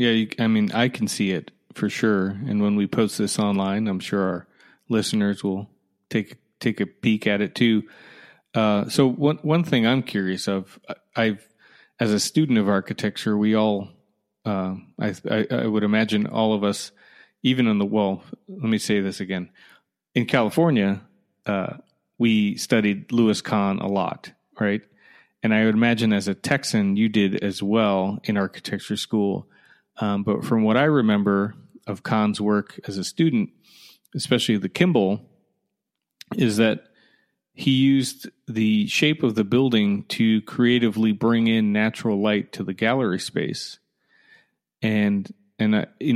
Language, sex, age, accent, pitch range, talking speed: English, male, 30-49, American, 100-115 Hz, 160 wpm